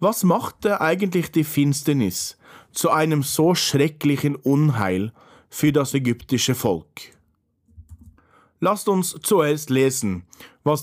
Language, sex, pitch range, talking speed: German, male, 110-150 Hz, 105 wpm